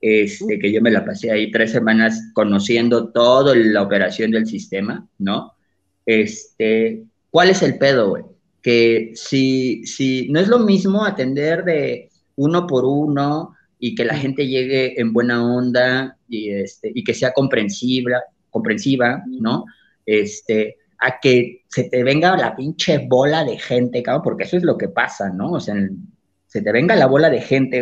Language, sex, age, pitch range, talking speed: Spanish, male, 30-49, 115-175 Hz, 170 wpm